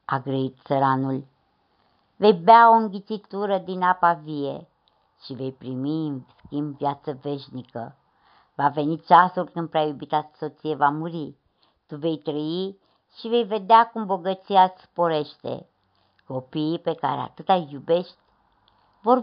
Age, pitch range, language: 60-79, 140-185 Hz, Romanian